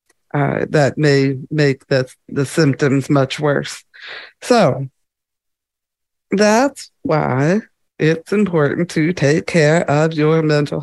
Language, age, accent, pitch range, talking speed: English, 50-69, American, 140-165 Hz, 110 wpm